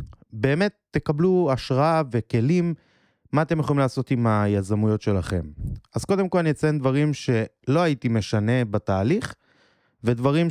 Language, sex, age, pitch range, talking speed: Hebrew, male, 20-39, 105-135 Hz, 125 wpm